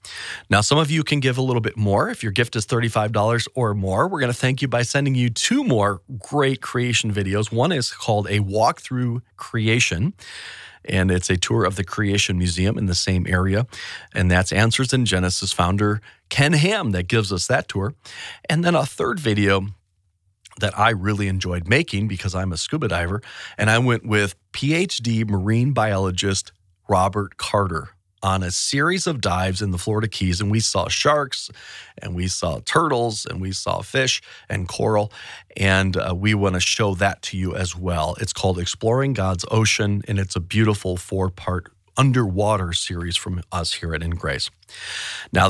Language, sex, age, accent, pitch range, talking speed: English, male, 40-59, American, 95-120 Hz, 180 wpm